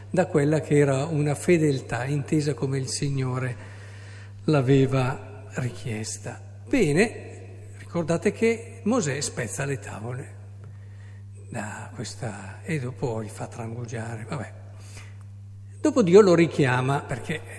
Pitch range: 105-160 Hz